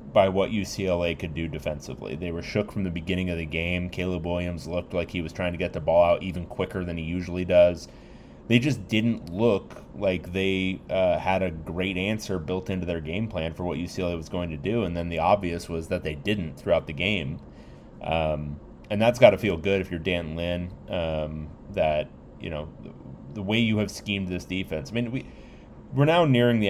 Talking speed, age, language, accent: 220 wpm, 30-49, English, American